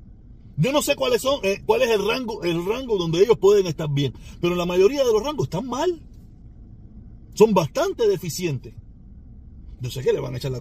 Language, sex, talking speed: Spanish, male, 200 wpm